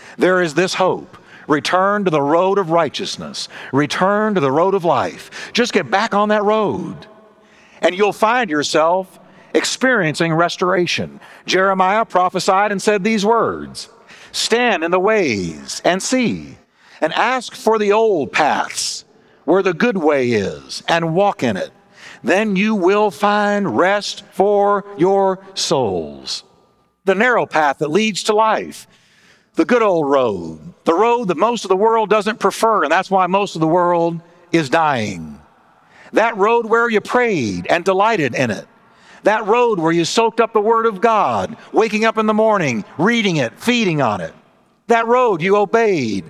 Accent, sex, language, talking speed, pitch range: American, male, English, 160 wpm, 180-220 Hz